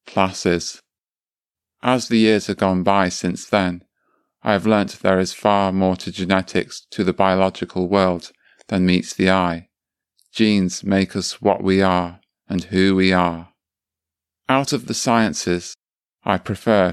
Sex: male